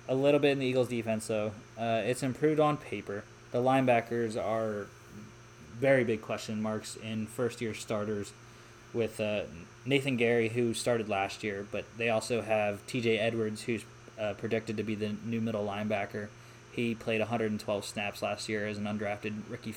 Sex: male